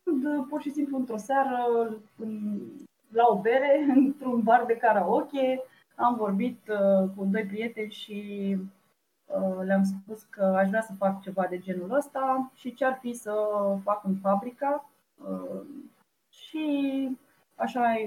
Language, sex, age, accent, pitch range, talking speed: Romanian, female, 20-39, native, 195-255 Hz, 125 wpm